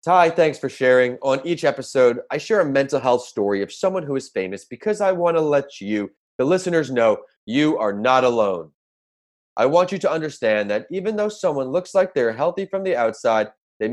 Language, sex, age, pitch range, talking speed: English, male, 30-49, 105-150 Hz, 205 wpm